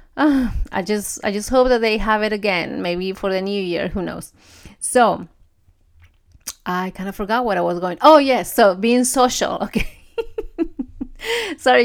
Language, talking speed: English, 165 wpm